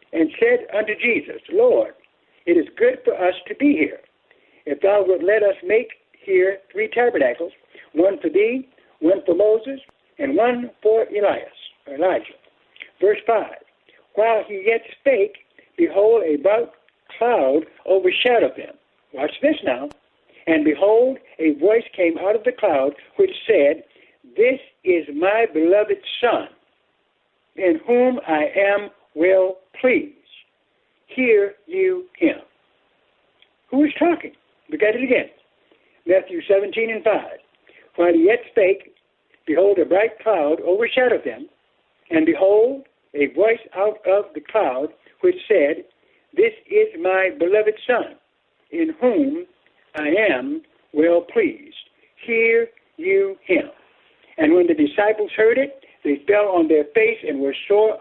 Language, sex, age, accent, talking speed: English, male, 60-79, American, 135 wpm